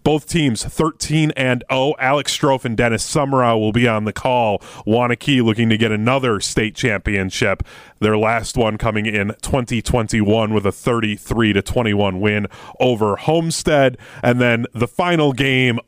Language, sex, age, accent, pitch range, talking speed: English, male, 30-49, American, 105-130 Hz, 155 wpm